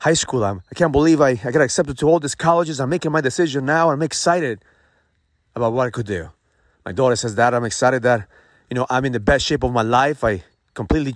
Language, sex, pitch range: English, male, 105-150 Hz